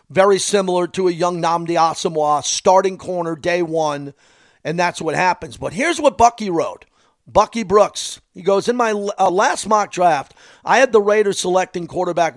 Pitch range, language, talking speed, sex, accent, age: 165-200 Hz, English, 175 wpm, male, American, 50-69